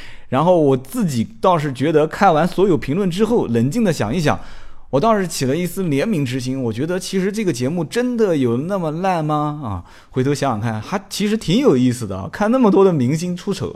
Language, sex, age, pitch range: Chinese, male, 20-39, 115-175 Hz